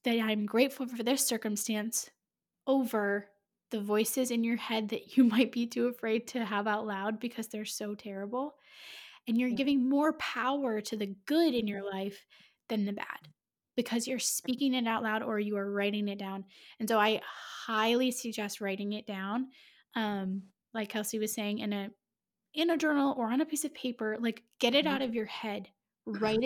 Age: 10-29